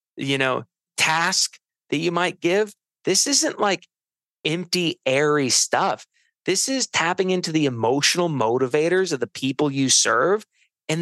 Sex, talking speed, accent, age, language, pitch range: male, 140 wpm, American, 30-49, English, 125-180 Hz